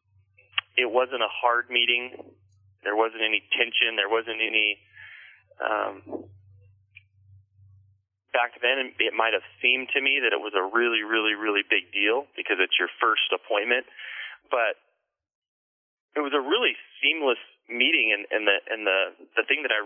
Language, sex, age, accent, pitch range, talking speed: English, male, 30-49, American, 100-130 Hz, 155 wpm